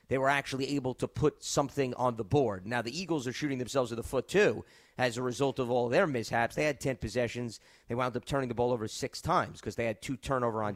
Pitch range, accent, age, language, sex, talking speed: 120-155 Hz, American, 30-49, English, male, 255 wpm